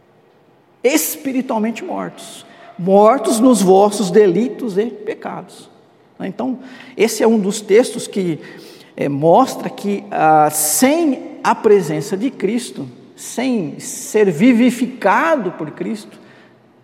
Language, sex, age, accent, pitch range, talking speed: Portuguese, male, 50-69, Brazilian, 190-255 Hz, 100 wpm